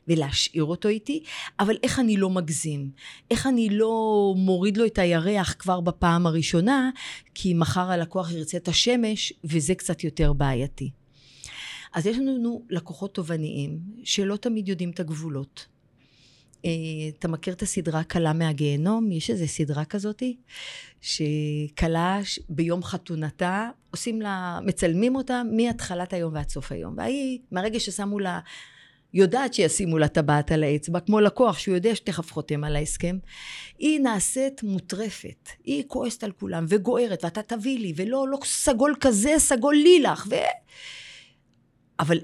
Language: Hebrew